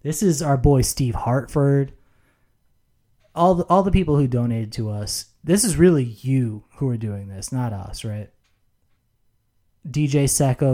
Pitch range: 110-140 Hz